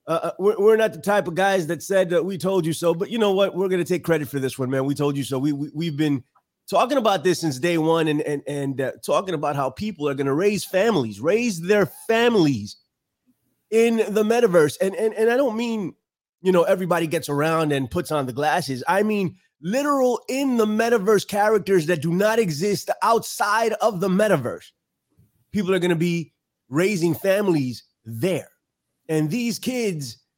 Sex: male